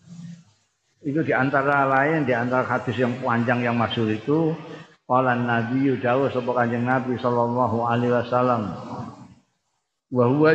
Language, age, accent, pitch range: Indonesian, 50-69, native, 120-145 Hz